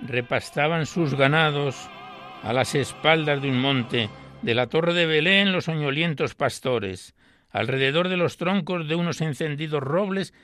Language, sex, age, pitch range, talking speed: Spanish, male, 60-79, 125-160 Hz, 145 wpm